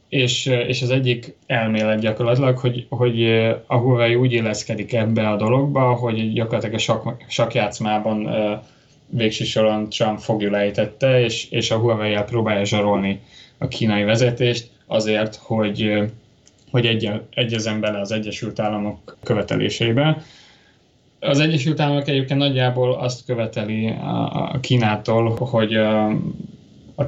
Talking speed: 120 wpm